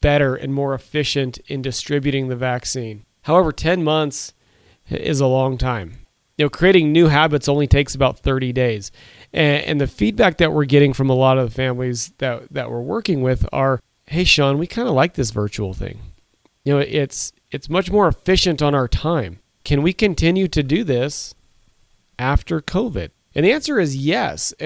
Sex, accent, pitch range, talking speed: male, American, 125-160 Hz, 185 wpm